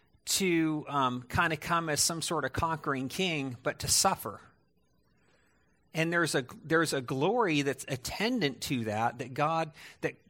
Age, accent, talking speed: 50-69, American, 155 wpm